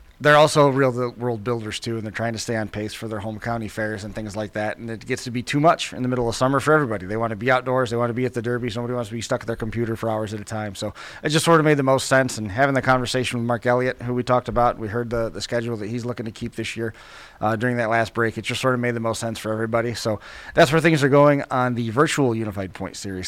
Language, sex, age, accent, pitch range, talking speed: English, male, 30-49, American, 110-130 Hz, 305 wpm